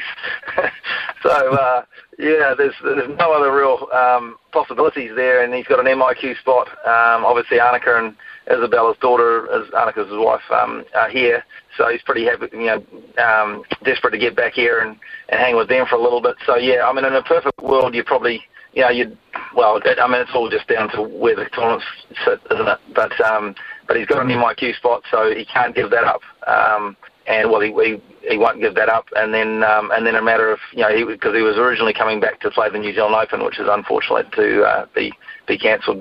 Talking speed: 220 wpm